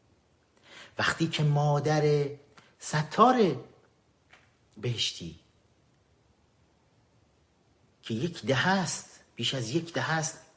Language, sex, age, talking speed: Persian, male, 50-69, 80 wpm